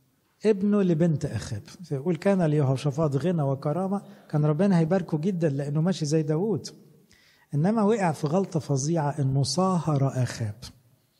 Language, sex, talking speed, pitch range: English, male, 135 wpm, 130-170 Hz